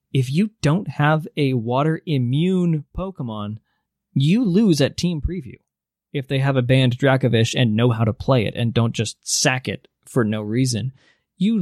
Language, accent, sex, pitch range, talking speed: English, American, male, 130-185 Hz, 170 wpm